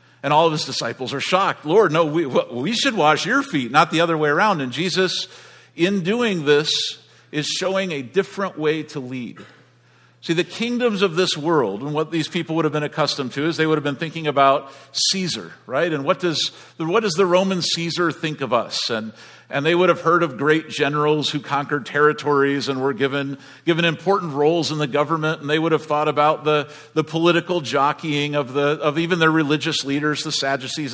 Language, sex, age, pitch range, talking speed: English, male, 50-69, 140-175 Hz, 210 wpm